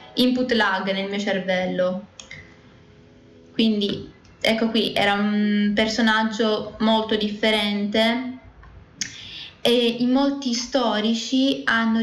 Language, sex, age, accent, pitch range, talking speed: Italian, female, 20-39, native, 190-225 Hz, 90 wpm